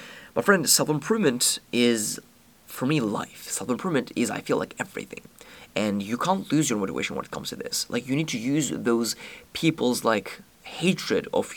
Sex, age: male, 30-49